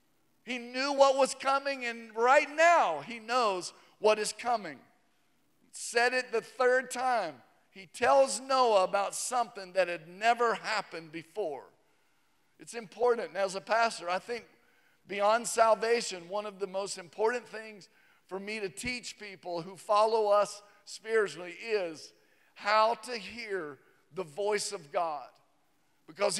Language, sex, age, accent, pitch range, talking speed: English, male, 50-69, American, 185-235 Hz, 140 wpm